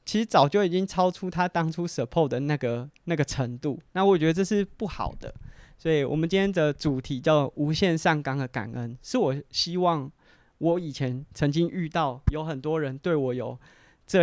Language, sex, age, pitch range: Chinese, male, 20-39, 130-170 Hz